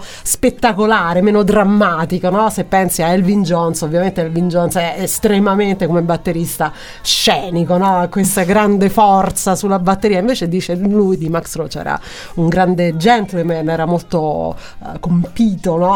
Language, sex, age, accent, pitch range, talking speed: Italian, female, 40-59, native, 175-215 Hz, 145 wpm